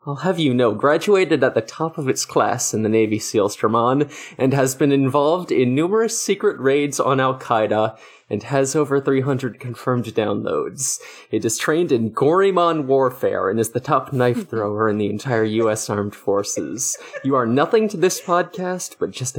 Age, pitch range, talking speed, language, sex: 20-39, 115-150 Hz, 180 wpm, English, male